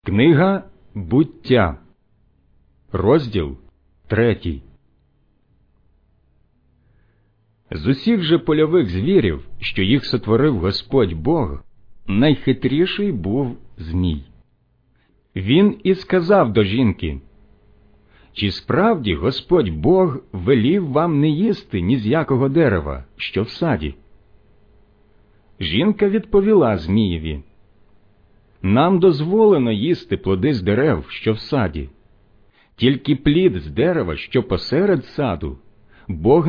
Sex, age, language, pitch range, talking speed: male, 50-69, Ukrainian, 95-140 Hz, 95 wpm